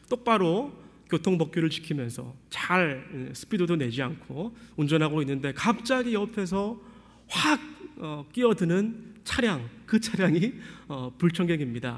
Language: Korean